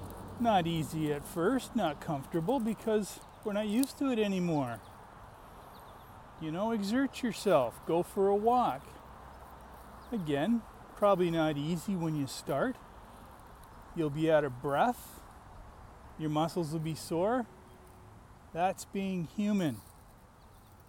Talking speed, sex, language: 120 wpm, male, English